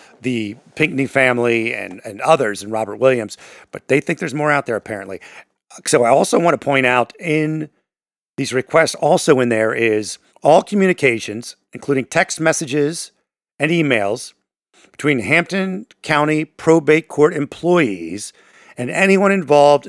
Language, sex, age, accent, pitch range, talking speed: English, male, 50-69, American, 120-155 Hz, 140 wpm